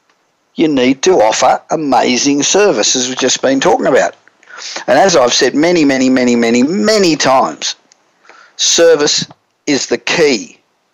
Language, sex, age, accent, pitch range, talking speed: English, male, 50-69, Australian, 130-190 Hz, 135 wpm